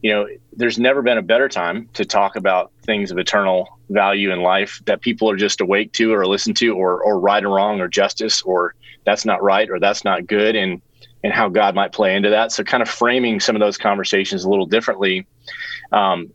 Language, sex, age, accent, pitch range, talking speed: English, male, 30-49, American, 95-115 Hz, 225 wpm